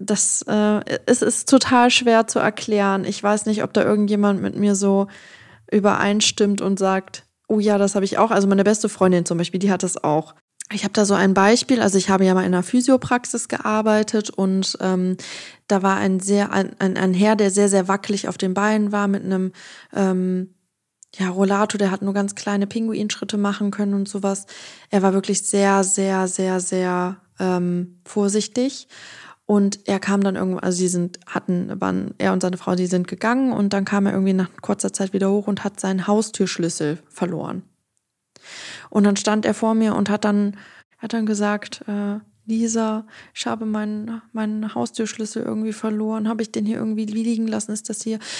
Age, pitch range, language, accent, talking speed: 20-39, 195-220 Hz, English, German, 195 wpm